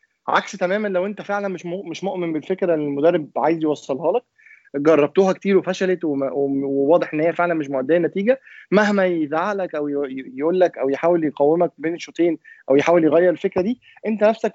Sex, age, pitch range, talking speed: male, 20-39, 150-195 Hz, 170 wpm